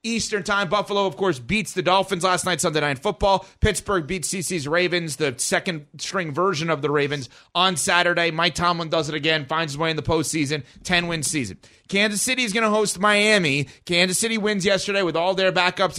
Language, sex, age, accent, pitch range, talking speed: English, male, 30-49, American, 155-190 Hz, 205 wpm